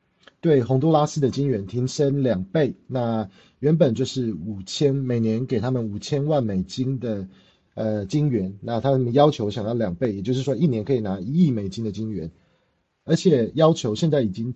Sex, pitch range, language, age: male, 110-145 Hz, Chinese, 30-49